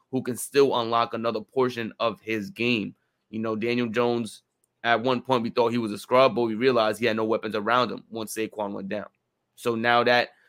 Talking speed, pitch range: 215 wpm, 110-130 Hz